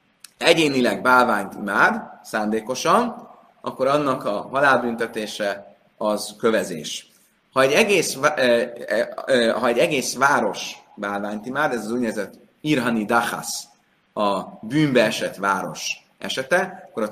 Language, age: Hungarian, 30-49